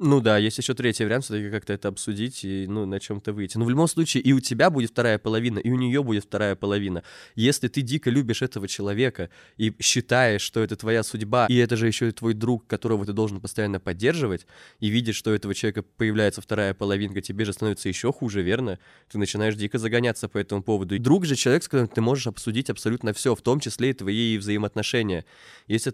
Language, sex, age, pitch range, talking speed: Russian, male, 20-39, 100-125 Hz, 220 wpm